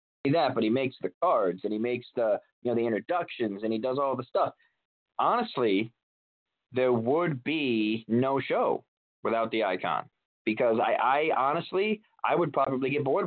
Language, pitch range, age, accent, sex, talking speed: English, 115-140 Hz, 30-49, American, male, 170 wpm